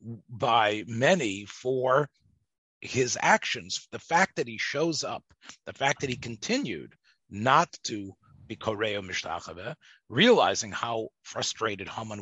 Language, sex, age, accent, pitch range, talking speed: English, male, 40-59, American, 105-150 Hz, 125 wpm